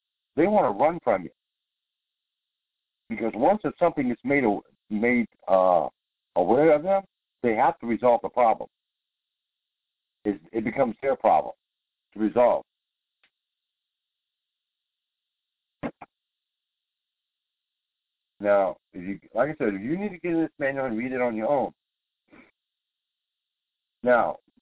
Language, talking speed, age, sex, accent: English, 125 wpm, 60-79, male, American